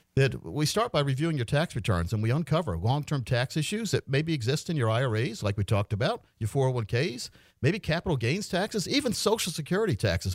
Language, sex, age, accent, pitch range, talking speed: English, male, 50-69, American, 105-155 Hz, 195 wpm